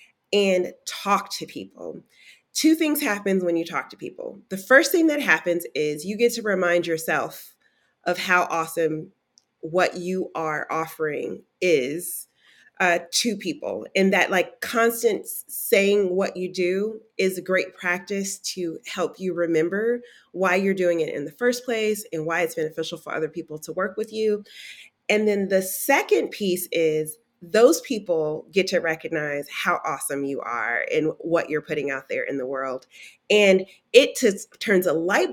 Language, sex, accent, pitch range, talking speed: English, female, American, 170-245 Hz, 165 wpm